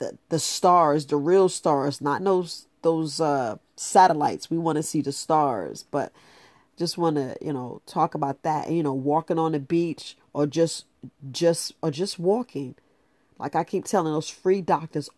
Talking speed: 180 wpm